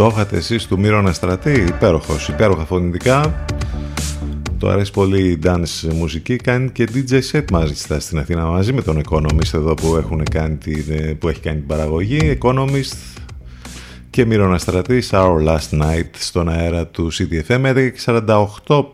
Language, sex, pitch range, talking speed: Greek, male, 80-110 Hz, 150 wpm